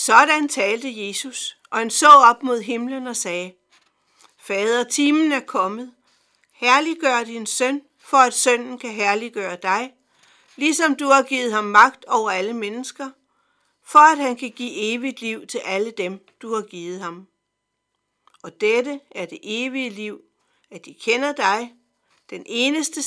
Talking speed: 155 wpm